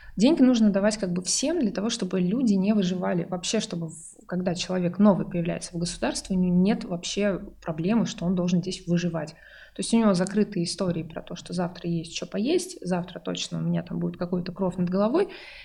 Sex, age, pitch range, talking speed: female, 20-39, 175-205 Hz, 205 wpm